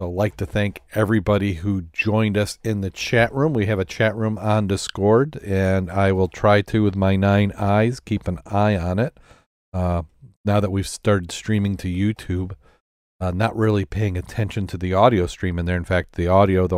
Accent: American